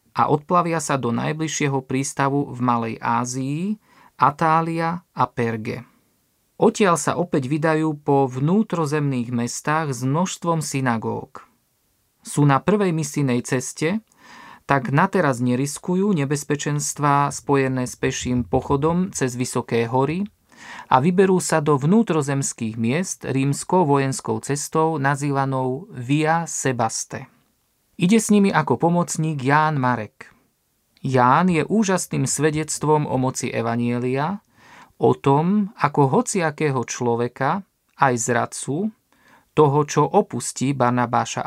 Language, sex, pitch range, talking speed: Slovak, male, 130-165 Hz, 110 wpm